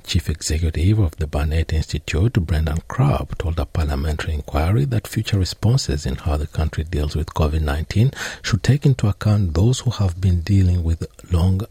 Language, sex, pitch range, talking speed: English, male, 80-100 Hz, 170 wpm